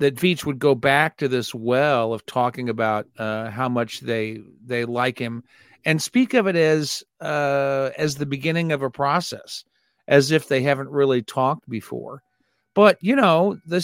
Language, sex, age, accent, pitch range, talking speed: English, male, 50-69, American, 125-160 Hz, 180 wpm